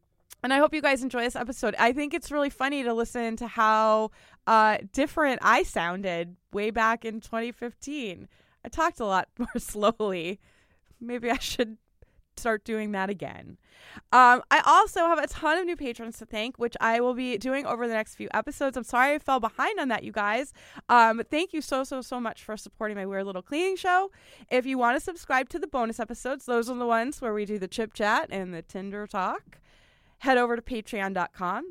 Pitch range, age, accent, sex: 220-285 Hz, 20-39, American, female